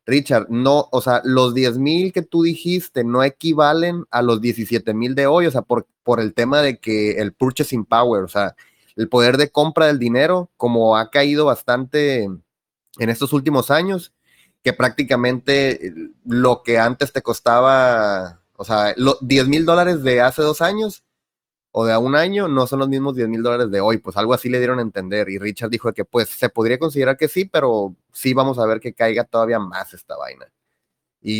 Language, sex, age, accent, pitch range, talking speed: Spanish, male, 30-49, Mexican, 115-150 Hz, 200 wpm